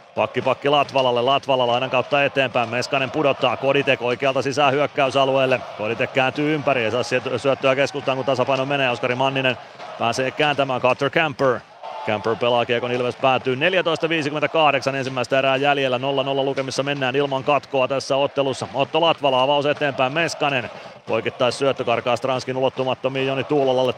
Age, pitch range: 30-49, 120-135 Hz